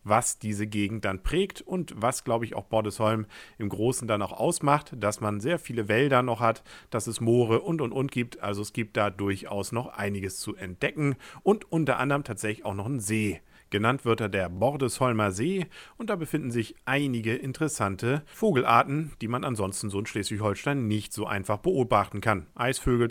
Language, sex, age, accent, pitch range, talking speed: English, male, 50-69, German, 105-145 Hz, 185 wpm